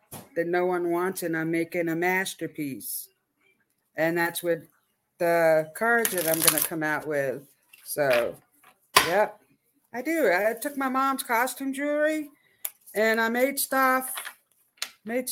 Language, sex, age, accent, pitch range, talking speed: English, female, 60-79, American, 185-260 Hz, 135 wpm